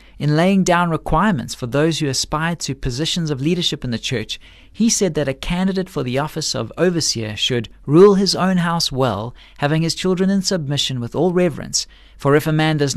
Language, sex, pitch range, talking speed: English, male, 125-165 Hz, 205 wpm